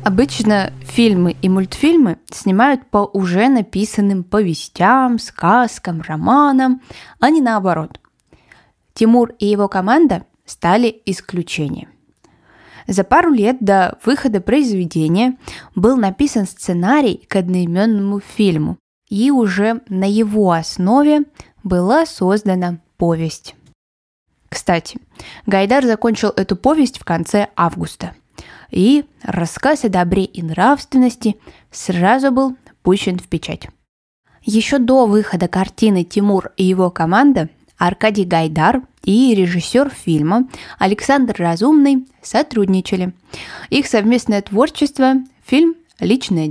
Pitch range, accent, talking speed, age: 175-245 Hz, native, 105 wpm, 10-29